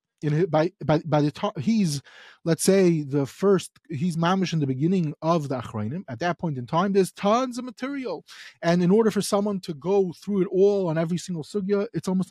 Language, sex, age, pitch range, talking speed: English, male, 30-49, 165-220 Hz, 225 wpm